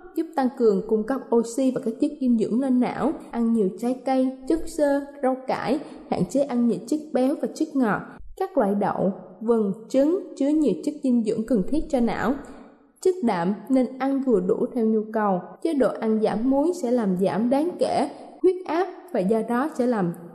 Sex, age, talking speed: female, 20-39, 205 wpm